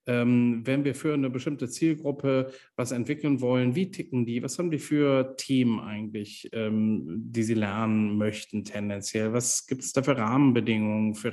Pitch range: 115-140 Hz